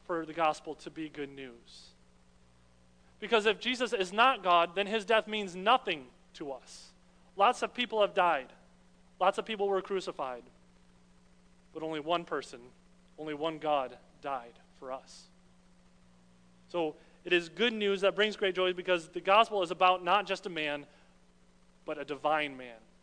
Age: 30-49